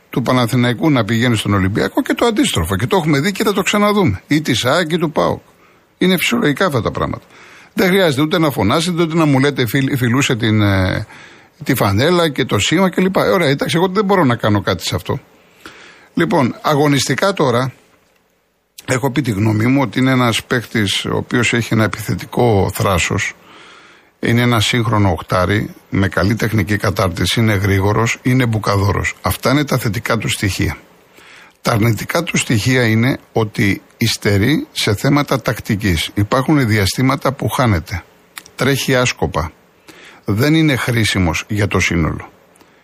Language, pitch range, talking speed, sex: Greek, 105-145 Hz, 165 wpm, male